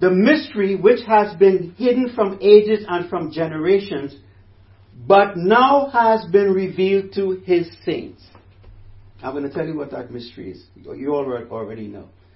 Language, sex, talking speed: English, male, 155 wpm